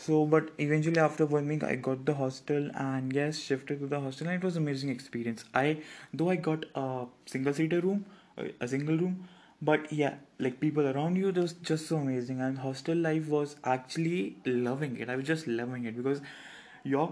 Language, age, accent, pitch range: Hindi, 20-39, native, 130-155 Hz